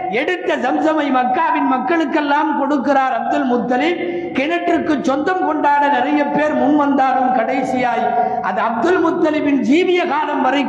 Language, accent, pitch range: Tamil, native, 195-265 Hz